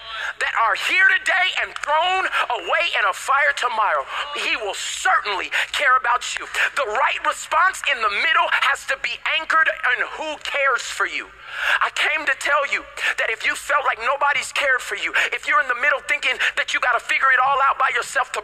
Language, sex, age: English, male, 40-59